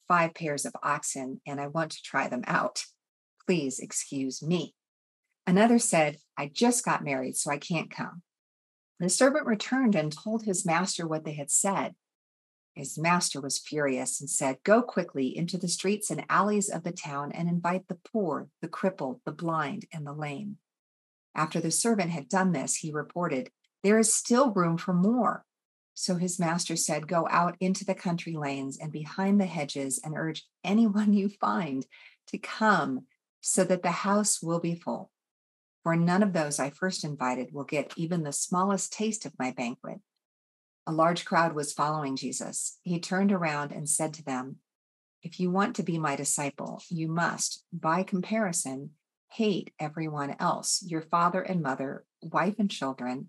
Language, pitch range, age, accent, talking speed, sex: English, 145-190 Hz, 50-69, American, 175 wpm, female